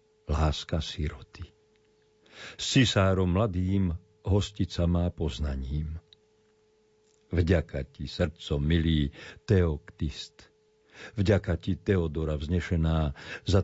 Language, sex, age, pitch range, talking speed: Slovak, male, 50-69, 85-115 Hz, 80 wpm